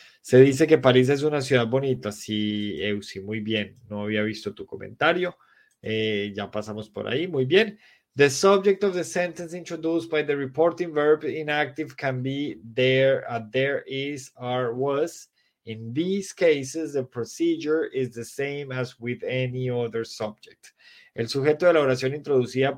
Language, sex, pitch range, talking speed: English, male, 115-140 Hz, 165 wpm